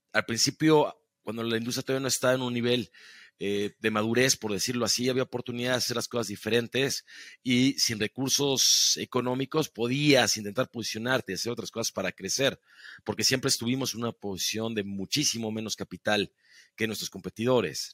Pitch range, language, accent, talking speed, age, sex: 110-130 Hz, Spanish, Mexican, 165 wpm, 40-59, male